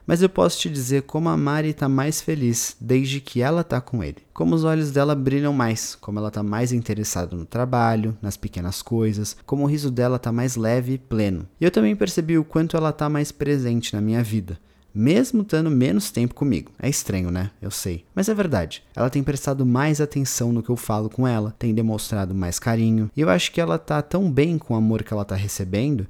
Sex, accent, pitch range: male, Brazilian, 105-145 Hz